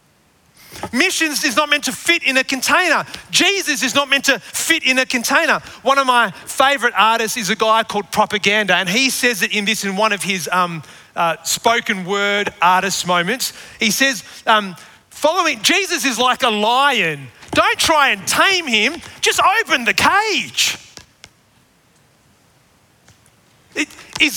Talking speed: 155 wpm